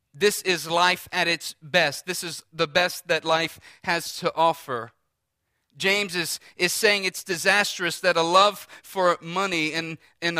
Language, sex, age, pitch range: English, male, 40-59, 135-175 Hz